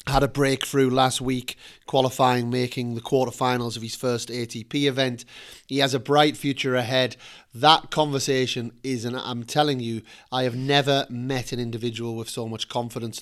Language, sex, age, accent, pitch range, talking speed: English, male, 30-49, British, 125-145 Hz, 170 wpm